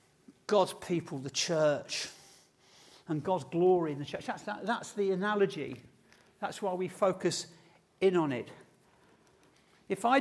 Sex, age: male, 50-69